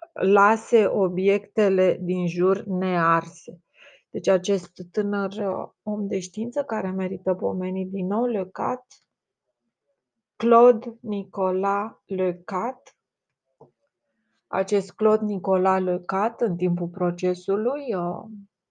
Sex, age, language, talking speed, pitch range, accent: female, 30-49, Romanian, 80 wpm, 175-205 Hz, native